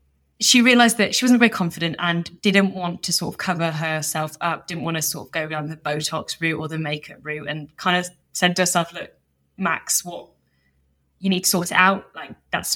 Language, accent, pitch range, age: English, British, 155-190 Hz, 20-39